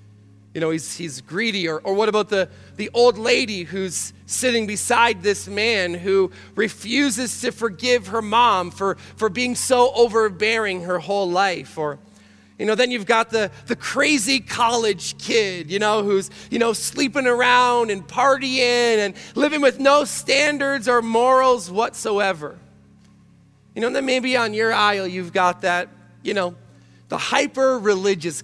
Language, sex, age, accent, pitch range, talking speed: English, male, 30-49, American, 150-235 Hz, 160 wpm